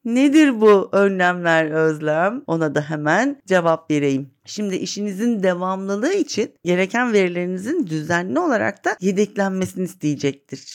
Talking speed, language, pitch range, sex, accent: 110 wpm, Turkish, 180-235 Hz, female, native